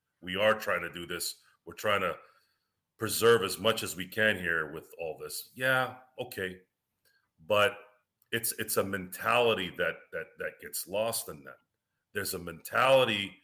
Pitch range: 95-140 Hz